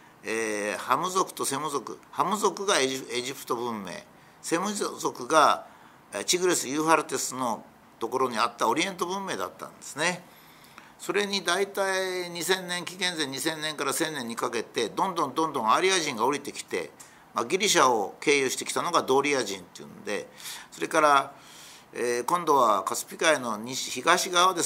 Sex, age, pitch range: male, 50-69, 135-200 Hz